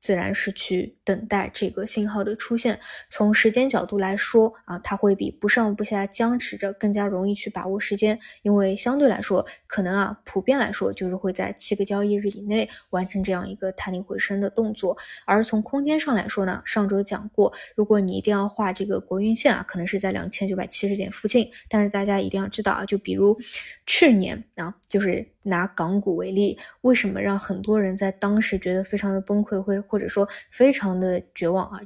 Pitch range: 195-225 Hz